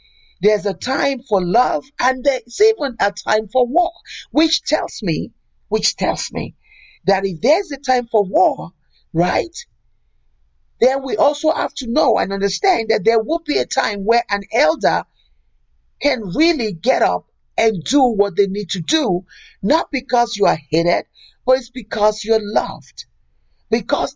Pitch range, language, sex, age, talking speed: 165-255 Hz, English, male, 50-69, 160 wpm